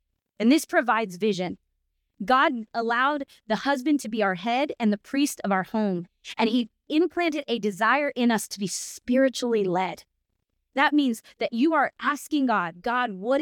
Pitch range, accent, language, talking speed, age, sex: 205-275 Hz, American, English, 170 wpm, 20-39, female